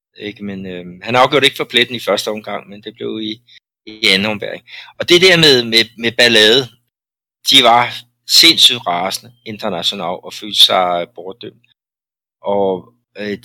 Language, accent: Danish, native